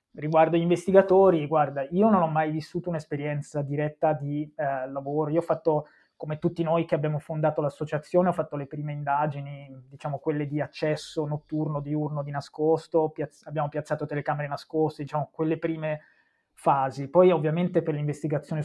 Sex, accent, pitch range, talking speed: male, native, 150-165 Hz, 160 wpm